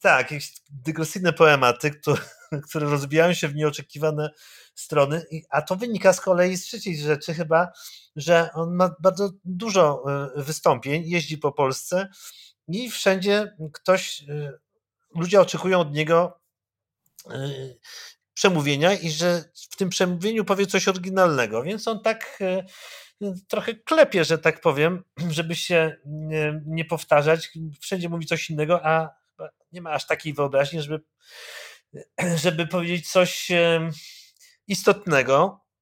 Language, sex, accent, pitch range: Polish, male, native, 150-185 Hz